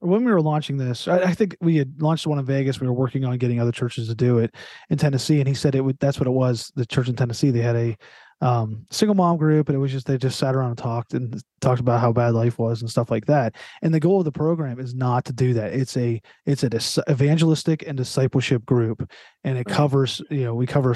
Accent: American